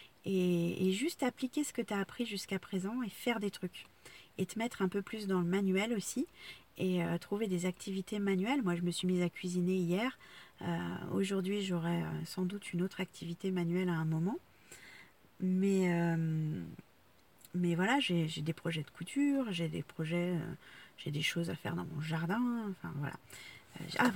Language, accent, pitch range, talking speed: French, French, 170-210 Hz, 195 wpm